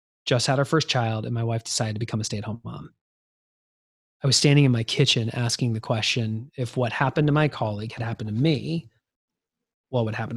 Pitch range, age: 115-140 Hz, 20-39